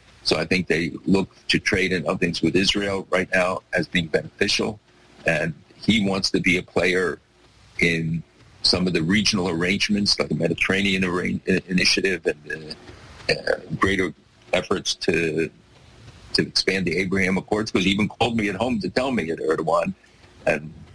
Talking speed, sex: 165 wpm, male